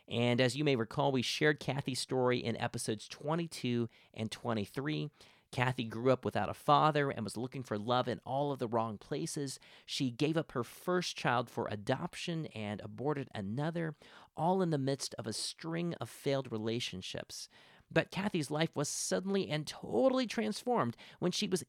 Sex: male